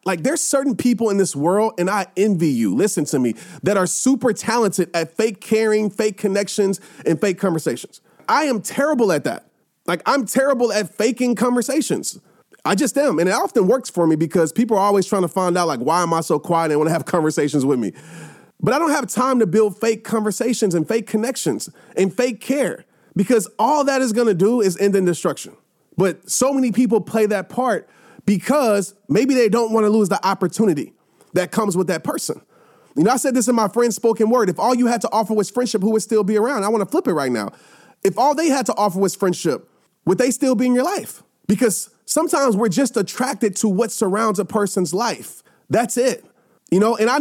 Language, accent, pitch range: English, American, 195-245 Hz